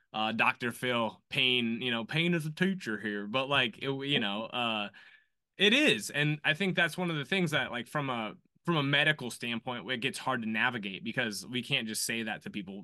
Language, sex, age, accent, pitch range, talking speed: English, male, 20-39, American, 110-150 Hz, 225 wpm